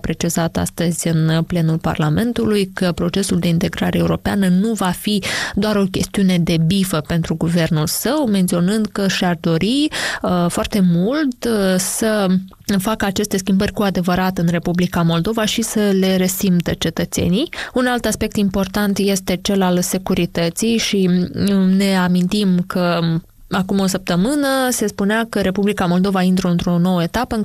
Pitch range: 180-210 Hz